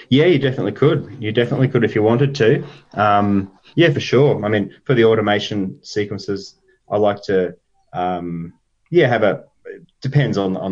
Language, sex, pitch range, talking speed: English, male, 95-125 Hz, 175 wpm